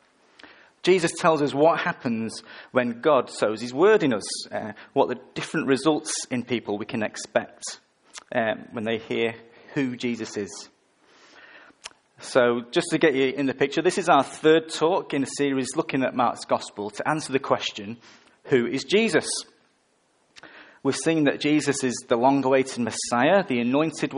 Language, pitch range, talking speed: English, 120-150 Hz, 165 wpm